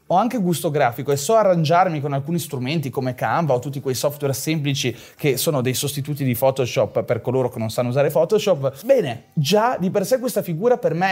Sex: male